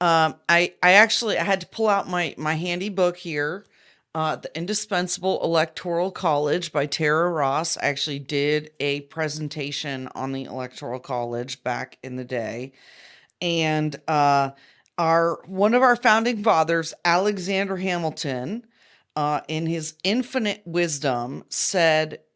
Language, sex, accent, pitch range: English, female, American, 145-190 Hz